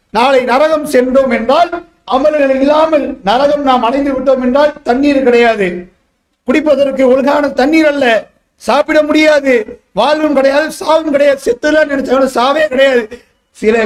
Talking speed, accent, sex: 145 wpm, Indian, male